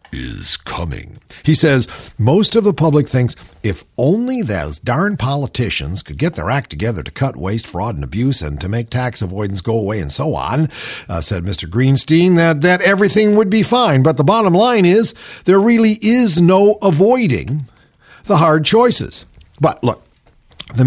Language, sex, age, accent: English, male, 50-69, American